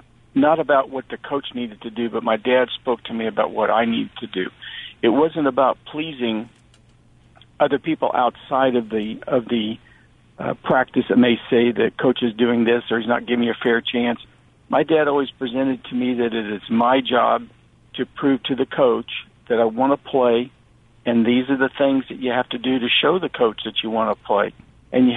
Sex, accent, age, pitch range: male, American, 50-69, 120-140 Hz